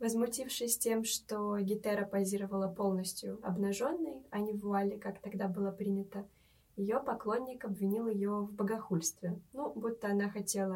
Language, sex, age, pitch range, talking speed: Russian, female, 20-39, 195-225 Hz, 140 wpm